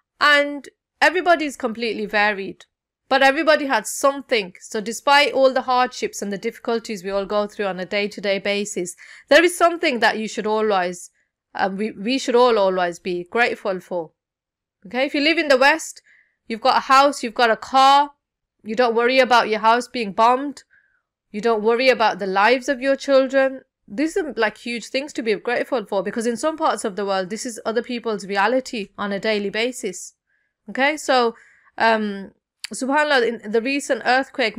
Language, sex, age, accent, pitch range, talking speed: English, female, 30-49, Indian, 205-265 Hz, 180 wpm